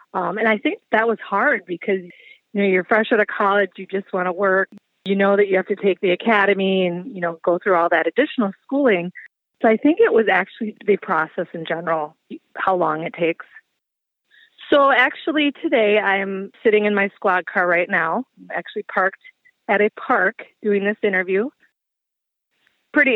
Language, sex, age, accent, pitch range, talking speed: English, female, 30-49, American, 180-225 Hz, 185 wpm